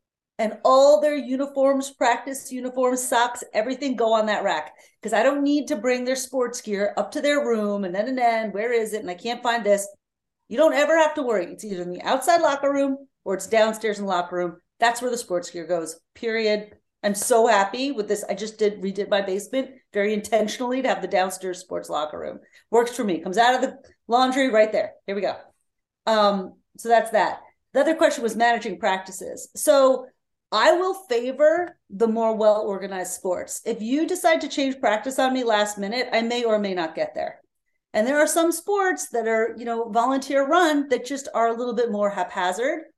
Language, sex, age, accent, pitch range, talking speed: English, female, 40-59, American, 205-270 Hz, 210 wpm